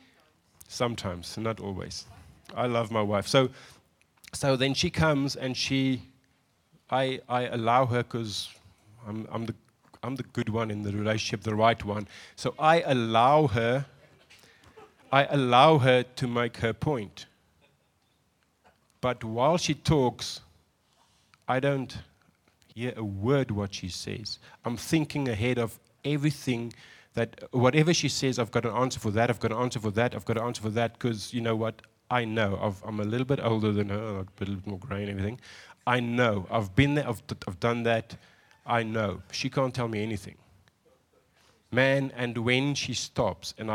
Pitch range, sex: 105-130 Hz, male